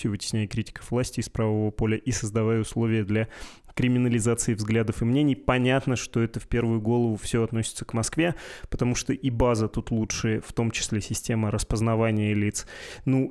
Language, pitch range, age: Russian, 110-125 Hz, 20-39